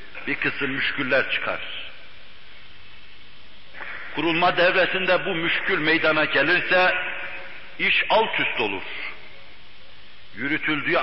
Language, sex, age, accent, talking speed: English, male, 60-79, Turkish, 75 wpm